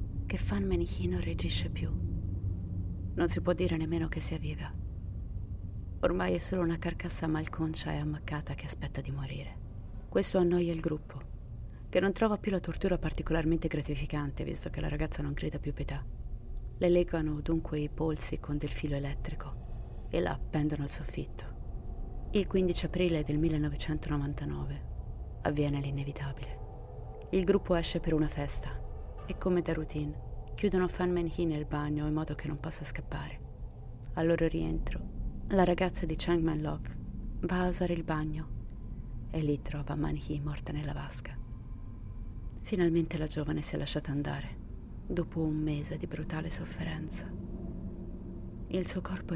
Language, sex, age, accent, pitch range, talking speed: Italian, female, 30-49, native, 105-165 Hz, 155 wpm